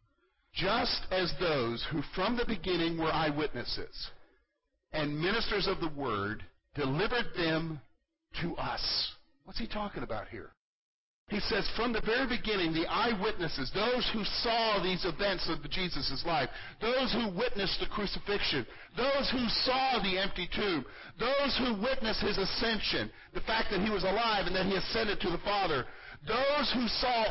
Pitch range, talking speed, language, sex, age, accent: 185-260 Hz, 155 wpm, English, male, 50-69, American